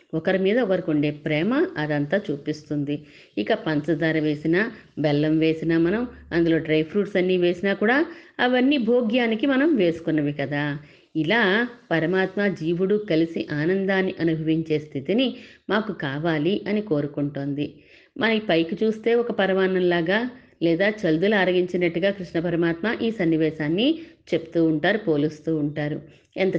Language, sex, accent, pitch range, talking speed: Telugu, female, native, 155-205 Hz, 115 wpm